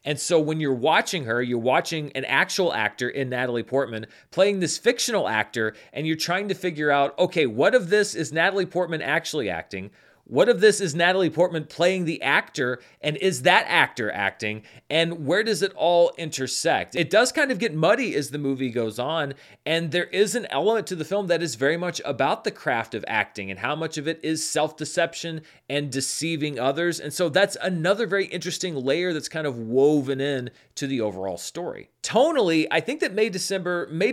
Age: 30-49